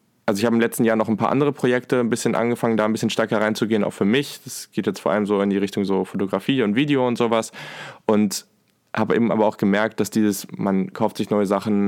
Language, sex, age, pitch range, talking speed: German, male, 20-39, 100-110 Hz, 255 wpm